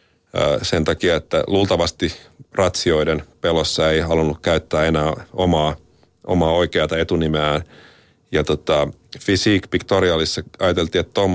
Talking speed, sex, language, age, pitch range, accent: 110 wpm, male, Finnish, 40-59, 80-90 Hz, native